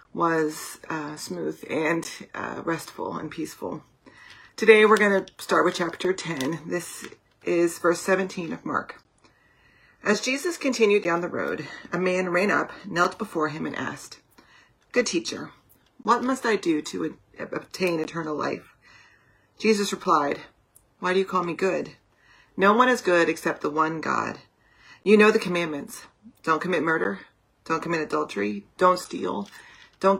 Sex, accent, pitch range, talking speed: female, American, 160-205 Hz, 150 wpm